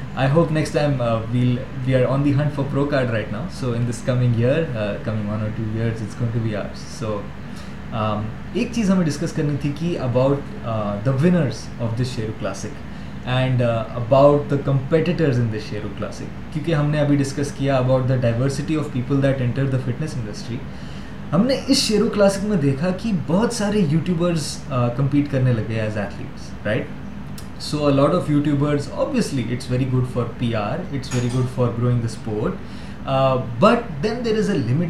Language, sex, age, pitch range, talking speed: Urdu, male, 20-39, 120-165 Hz, 195 wpm